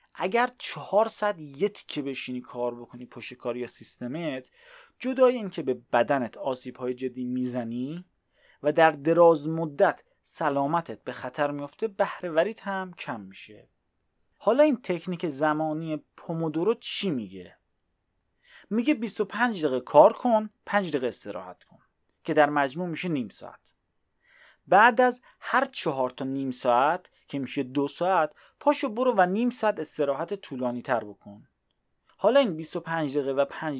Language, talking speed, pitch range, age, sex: Persian, 140 wpm, 130-195 Hz, 30-49, male